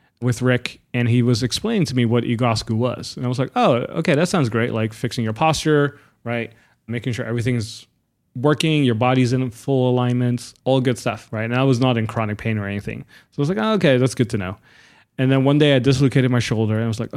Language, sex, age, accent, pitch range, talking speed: English, male, 20-39, American, 110-130 Hz, 240 wpm